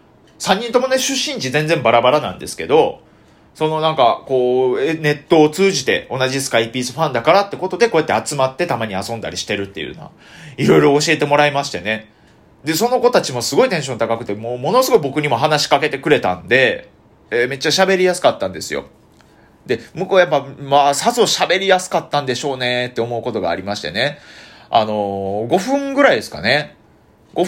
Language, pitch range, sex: Japanese, 115-185 Hz, male